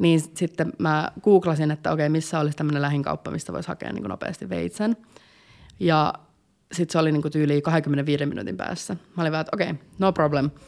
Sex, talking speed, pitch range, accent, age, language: female, 190 wpm, 155-195 Hz, native, 30-49, Finnish